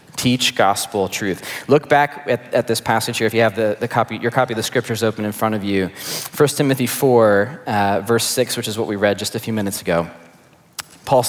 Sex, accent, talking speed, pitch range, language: male, American, 230 wpm, 115-135 Hz, English